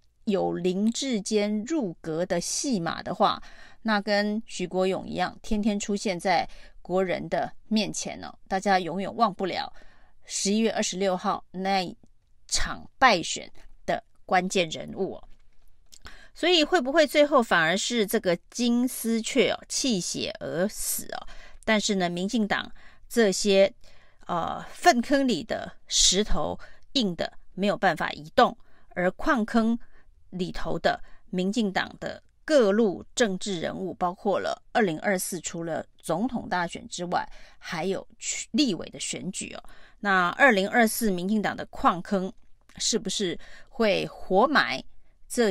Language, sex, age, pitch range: Chinese, female, 30-49, 185-235 Hz